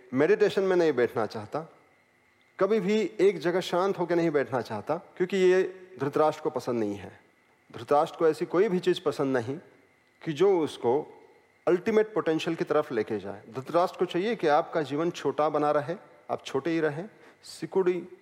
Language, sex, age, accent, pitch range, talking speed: Hindi, male, 40-59, native, 140-190 Hz, 170 wpm